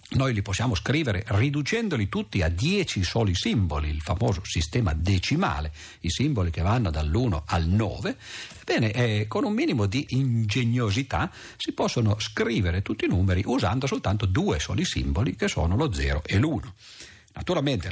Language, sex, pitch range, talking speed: Italian, male, 90-120 Hz, 155 wpm